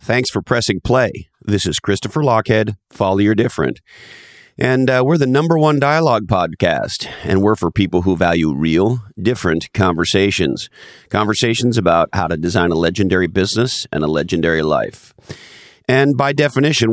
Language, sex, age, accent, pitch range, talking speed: English, male, 40-59, American, 95-115 Hz, 150 wpm